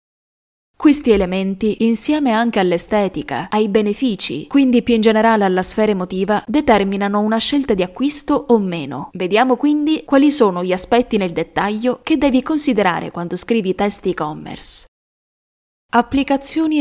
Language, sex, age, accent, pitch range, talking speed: Italian, female, 20-39, native, 190-245 Hz, 130 wpm